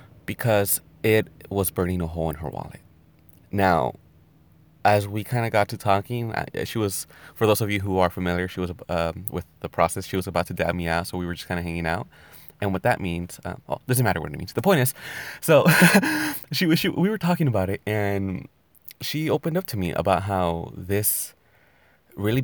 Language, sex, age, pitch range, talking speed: English, male, 20-39, 90-125 Hz, 215 wpm